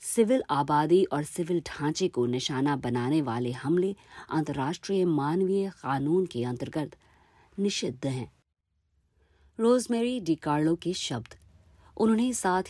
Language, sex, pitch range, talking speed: Hindi, female, 130-180 Hz, 110 wpm